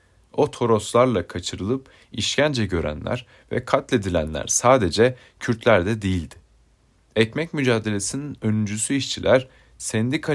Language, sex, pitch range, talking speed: Turkish, male, 95-130 Hz, 95 wpm